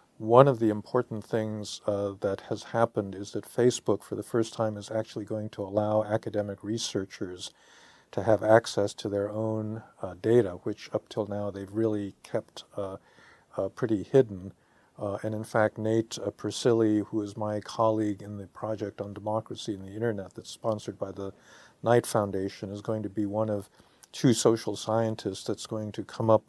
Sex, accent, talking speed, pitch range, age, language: male, American, 185 wpm, 100-115 Hz, 50-69, English